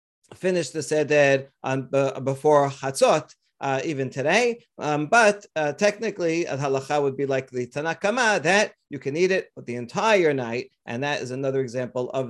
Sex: male